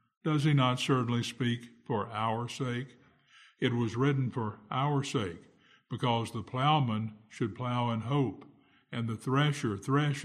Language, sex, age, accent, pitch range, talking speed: English, male, 60-79, American, 115-135 Hz, 145 wpm